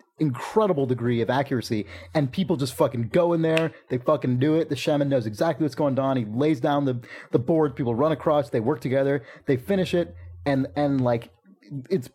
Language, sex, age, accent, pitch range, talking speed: English, male, 30-49, American, 120-155 Hz, 205 wpm